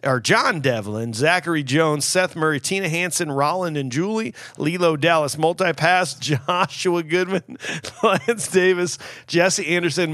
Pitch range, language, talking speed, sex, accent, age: 155-205 Hz, English, 125 wpm, male, American, 40-59